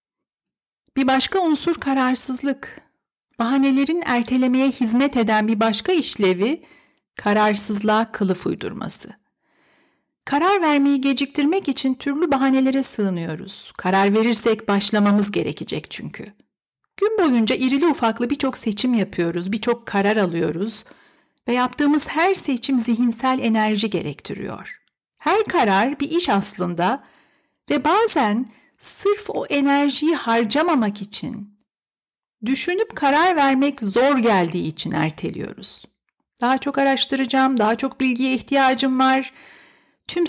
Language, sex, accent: Turkish, female, native